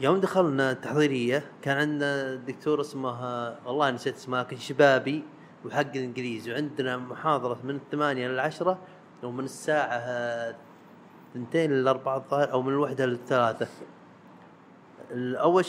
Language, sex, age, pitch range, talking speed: Arabic, male, 30-49, 125-155 Hz, 110 wpm